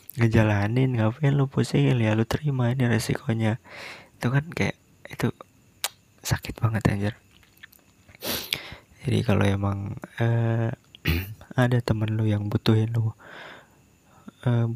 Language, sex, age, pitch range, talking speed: Indonesian, male, 20-39, 105-120 Hz, 110 wpm